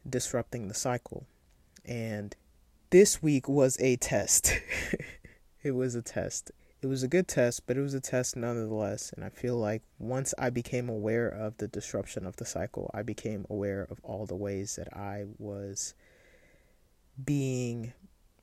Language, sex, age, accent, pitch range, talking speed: English, male, 20-39, American, 110-140 Hz, 160 wpm